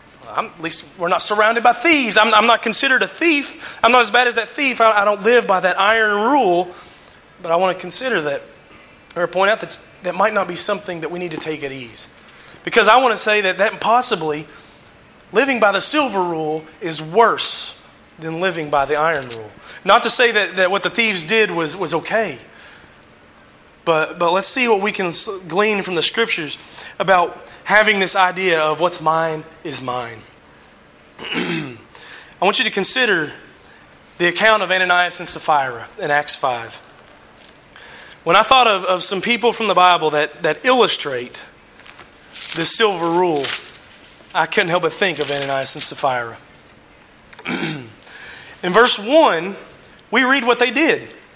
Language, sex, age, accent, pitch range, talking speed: English, male, 30-49, American, 165-225 Hz, 175 wpm